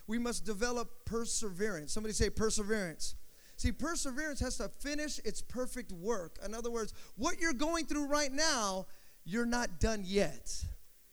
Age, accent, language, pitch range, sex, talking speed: 30-49, American, English, 195-280 Hz, male, 150 wpm